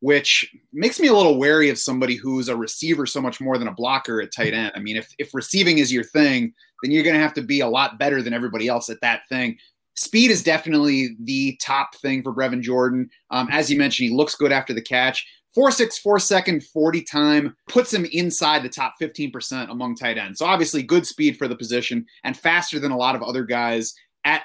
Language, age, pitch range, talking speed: English, 30-49, 125-155 Hz, 225 wpm